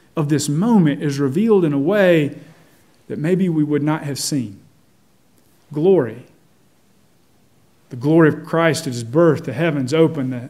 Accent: American